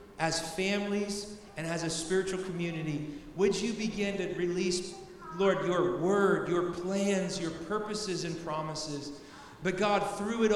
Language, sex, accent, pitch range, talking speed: English, male, American, 150-185 Hz, 140 wpm